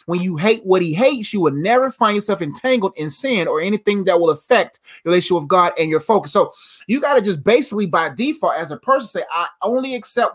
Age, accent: 20-39, American